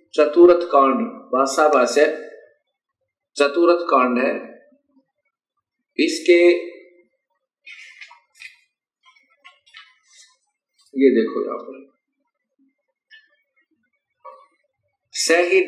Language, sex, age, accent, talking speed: Hindi, male, 50-69, native, 40 wpm